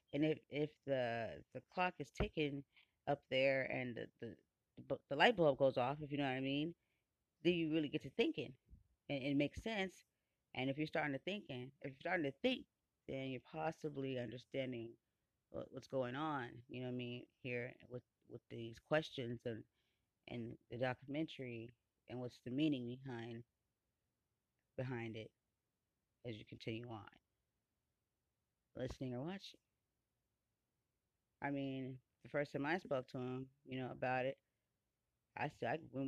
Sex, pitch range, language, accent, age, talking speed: female, 125-155 Hz, English, American, 30-49, 160 wpm